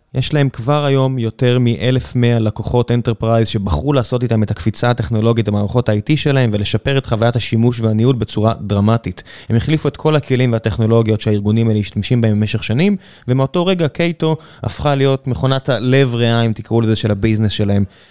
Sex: male